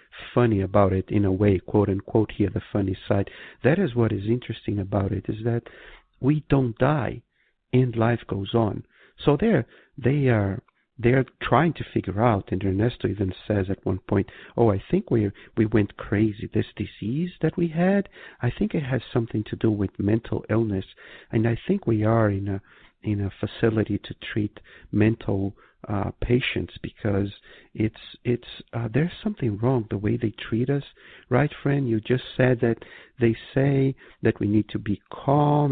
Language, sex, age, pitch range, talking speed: English, male, 50-69, 100-120 Hz, 180 wpm